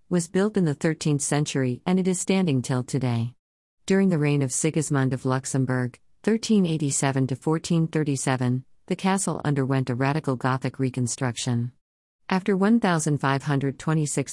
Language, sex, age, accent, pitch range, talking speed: English, female, 50-69, American, 130-160 Hz, 120 wpm